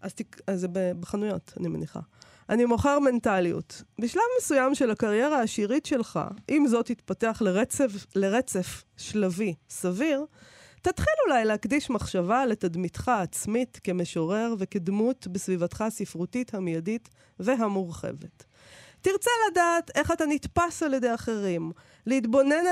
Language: Hebrew